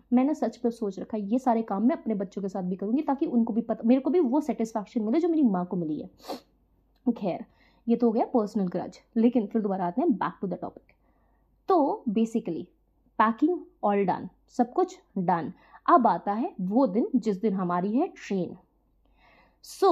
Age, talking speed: 20-39, 155 wpm